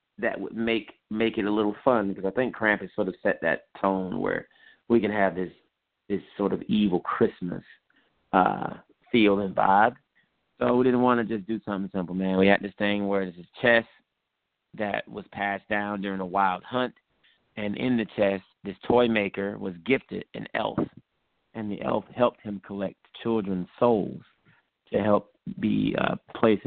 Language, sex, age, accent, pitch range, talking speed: English, male, 30-49, American, 95-115 Hz, 180 wpm